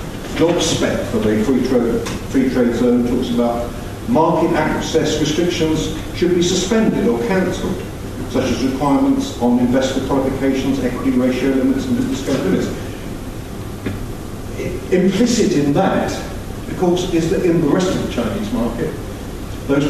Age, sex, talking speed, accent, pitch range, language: 50-69, male, 140 wpm, British, 110-155 Hz, English